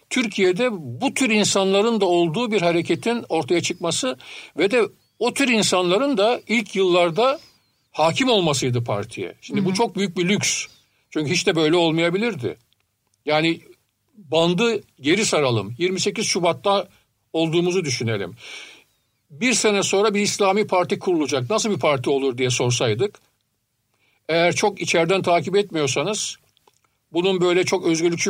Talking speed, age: 130 wpm, 60-79